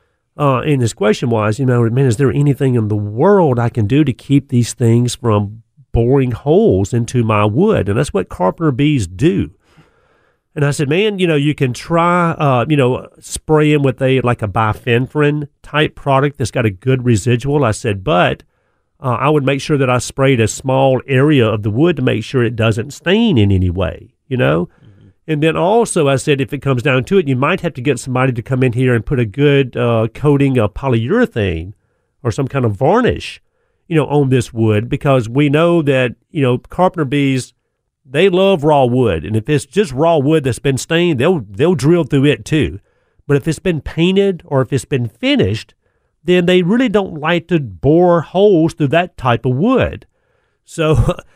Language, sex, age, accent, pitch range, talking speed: English, male, 40-59, American, 120-155 Hz, 205 wpm